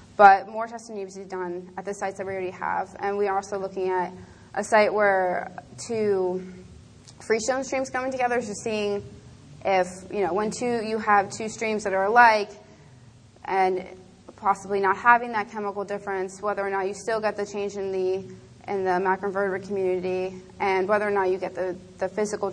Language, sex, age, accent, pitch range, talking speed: English, female, 20-39, American, 185-210 Hz, 200 wpm